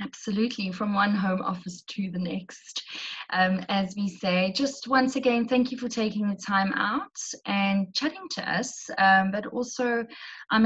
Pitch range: 190-220 Hz